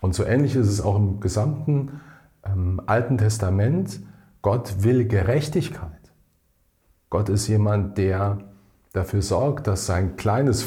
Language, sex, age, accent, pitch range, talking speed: German, male, 40-59, German, 95-125 Hz, 130 wpm